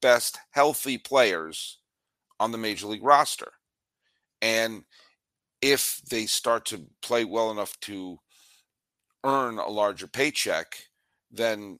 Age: 50-69